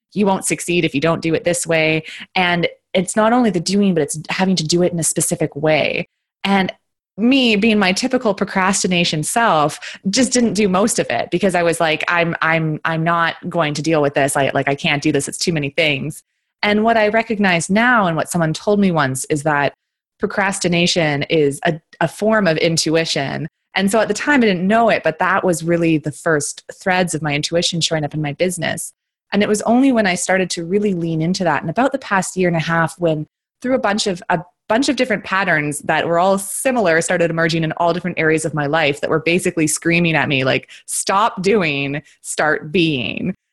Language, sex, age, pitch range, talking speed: English, female, 20-39, 160-195 Hz, 215 wpm